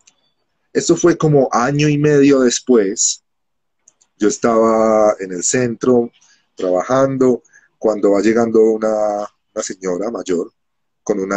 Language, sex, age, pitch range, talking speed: Spanish, male, 40-59, 105-135 Hz, 115 wpm